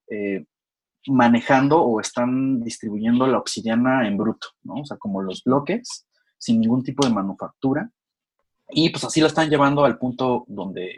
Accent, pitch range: Mexican, 115-155 Hz